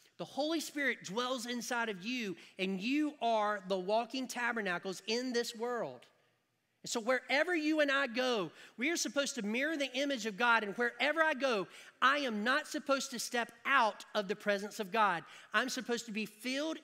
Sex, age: male, 40-59